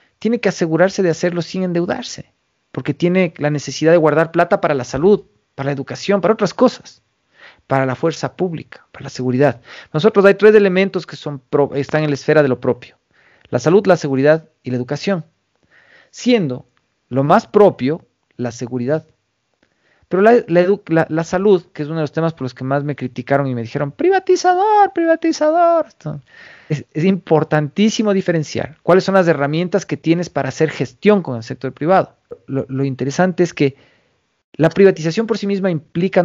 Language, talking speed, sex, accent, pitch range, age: Spanish, 175 wpm, male, Mexican, 130-180 Hz, 40-59